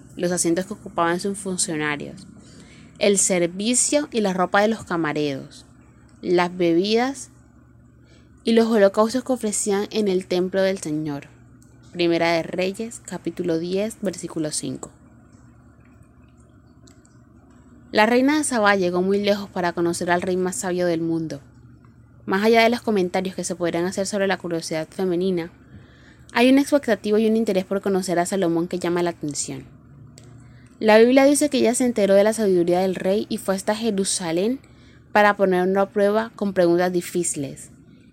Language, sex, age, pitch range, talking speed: Spanish, female, 20-39, 170-200 Hz, 155 wpm